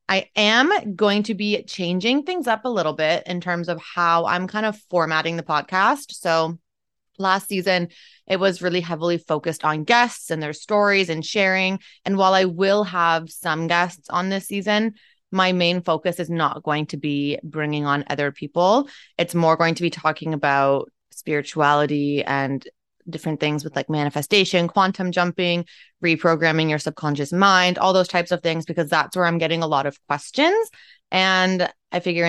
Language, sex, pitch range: English, female, 160-195 Hz